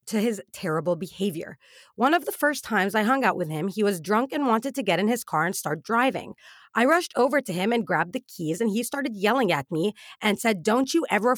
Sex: female